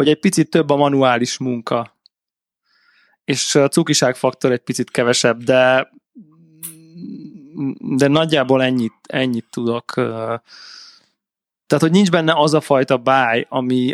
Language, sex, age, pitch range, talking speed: Hungarian, male, 20-39, 125-155 Hz, 120 wpm